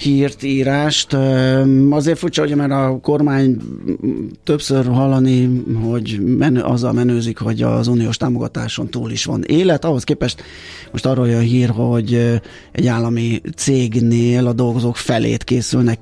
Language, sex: Hungarian, male